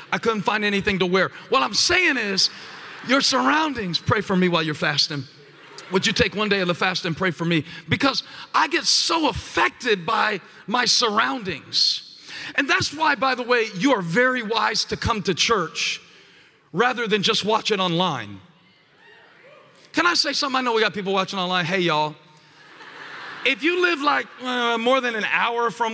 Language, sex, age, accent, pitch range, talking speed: English, male, 40-59, American, 190-265 Hz, 185 wpm